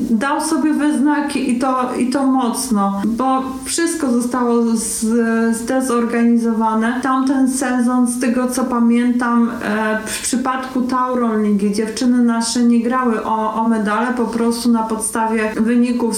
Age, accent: 40-59, native